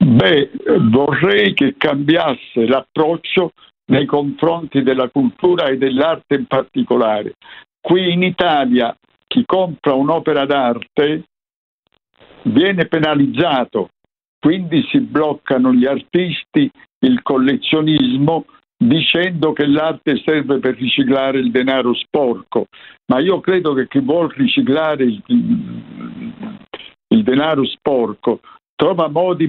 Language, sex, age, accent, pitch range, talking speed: Italian, male, 60-79, native, 135-190 Hz, 100 wpm